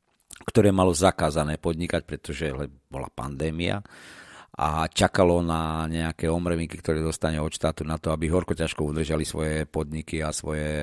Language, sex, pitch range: Slovak, male, 80-95 Hz